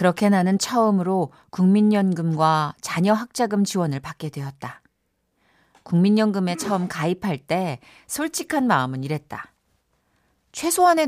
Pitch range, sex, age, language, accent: 150-195 Hz, female, 40-59, Korean, native